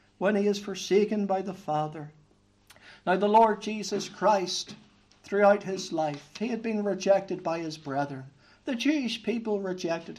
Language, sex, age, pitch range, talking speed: English, male, 60-79, 195-255 Hz, 155 wpm